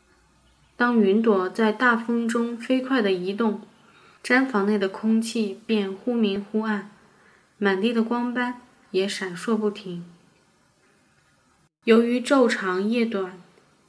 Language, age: Chinese, 20-39